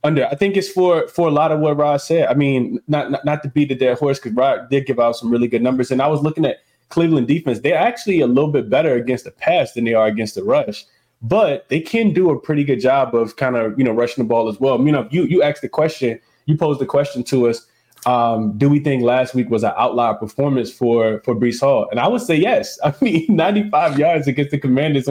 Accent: American